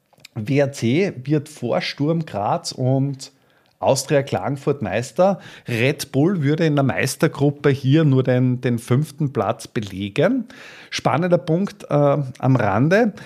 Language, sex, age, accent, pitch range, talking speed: German, male, 50-69, Austrian, 110-145 Hz, 120 wpm